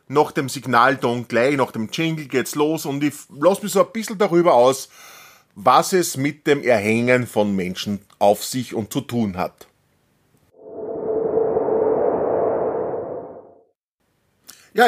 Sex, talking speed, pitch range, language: male, 130 wpm, 125-175 Hz, German